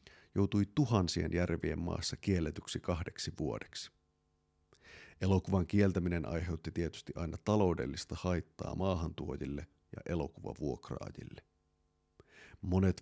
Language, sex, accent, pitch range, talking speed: Finnish, male, native, 75-95 Hz, 85 wpm